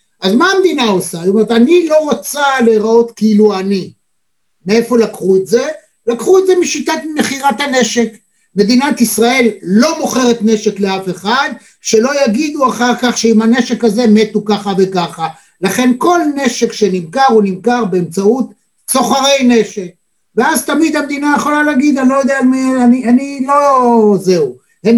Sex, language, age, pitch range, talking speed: male, Hebrew, 60-79, 210-270 Hz, 150 wpm